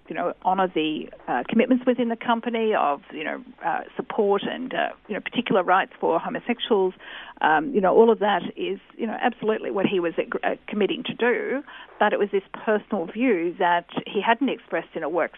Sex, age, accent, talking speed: female, 50-69, Australian, 205 wpm